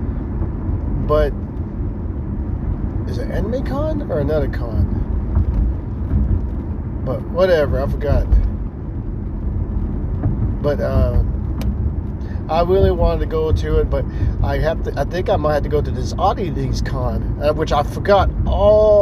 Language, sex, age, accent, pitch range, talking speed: English, male, 40-59, American, 80-105 Hz, 130 wpm